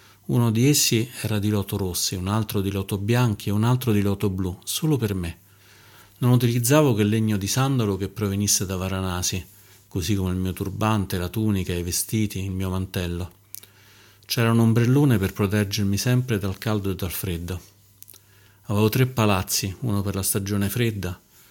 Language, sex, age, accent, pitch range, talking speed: Italian, male, 40-59, native, 100-110 Hz, 175 wpm